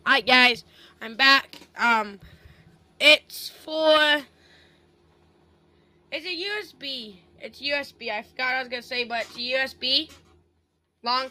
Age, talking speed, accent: 10-29, 125 wpm, American